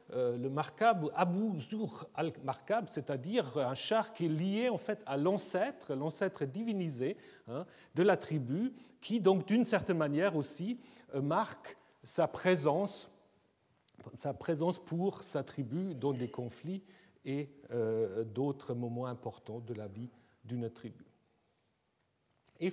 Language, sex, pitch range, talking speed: French, male, 130-195 Hz, 135 wpm